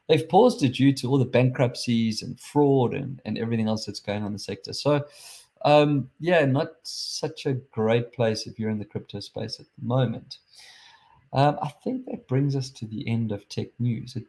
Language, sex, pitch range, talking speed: English, male, 110-145 Hz, 210 wpm